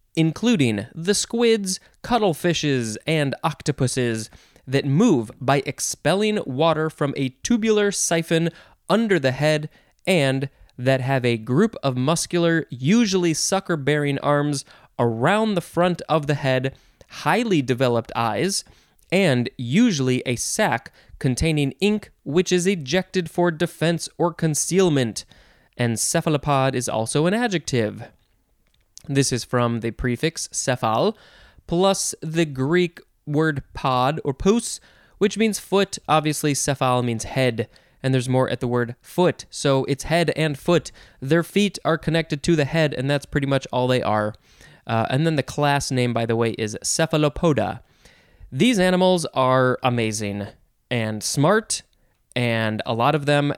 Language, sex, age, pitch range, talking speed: English, male, 20-39, 125-170 Hz, 140 wpm